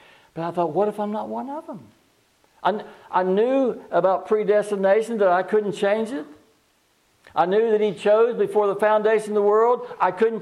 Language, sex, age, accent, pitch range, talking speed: English, male, 60-79, American, 145-220 Hz, 190 wpm